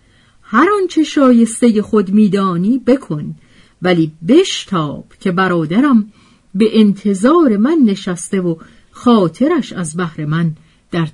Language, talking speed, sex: Persian, 115 wpm, female